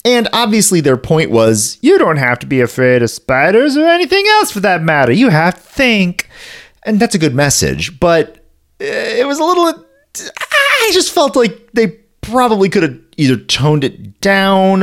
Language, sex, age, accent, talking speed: English, male, 30-49, American, 180 wpm